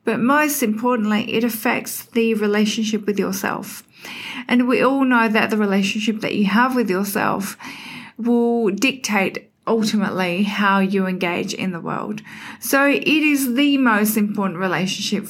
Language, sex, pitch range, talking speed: English, female, 190-225 Hz, 145 wpm